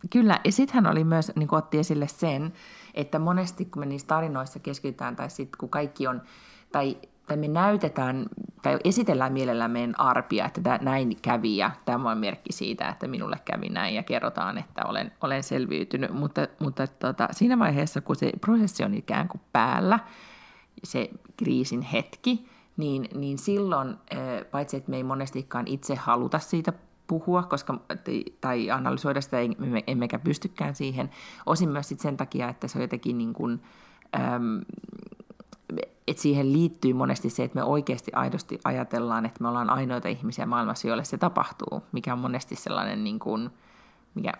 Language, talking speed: Finnish, 155 wpm